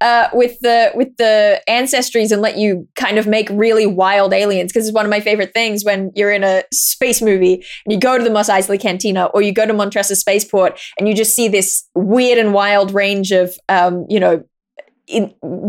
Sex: female